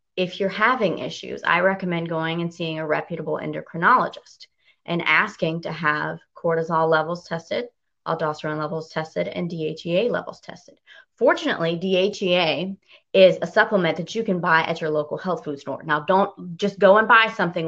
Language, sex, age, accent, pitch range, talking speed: English, female, 20-39, American, 160-190 Hz, 165 wpm